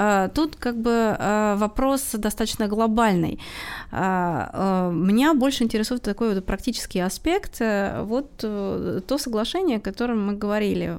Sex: female